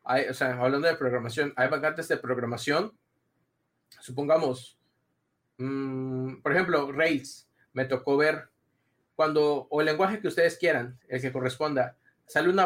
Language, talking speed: Spanish, 125 wpm